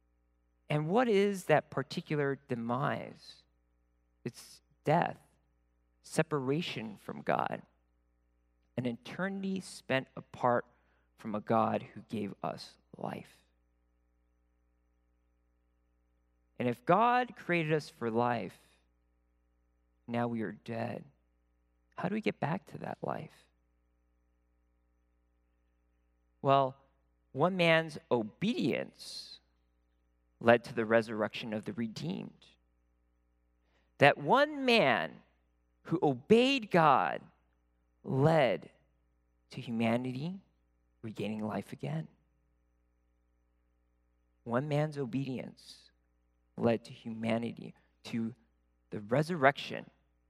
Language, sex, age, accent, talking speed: English, male, 40-59, American, 85 wpm